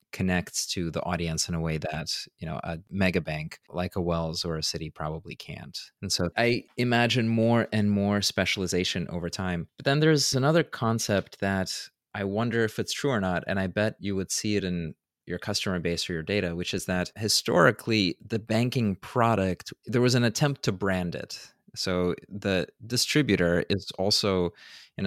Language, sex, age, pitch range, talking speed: English, male, 30-49, 85-105 Hz, 185 wpm